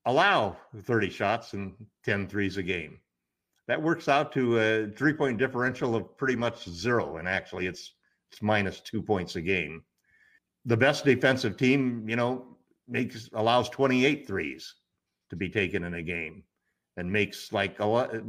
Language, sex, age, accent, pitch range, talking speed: English, male, 50-69, American, 100-130 Hz, 165 wpm